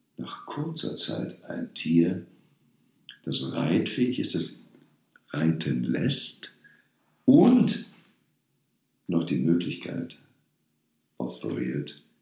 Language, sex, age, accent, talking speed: German, male, 60-79, German, 80 wpm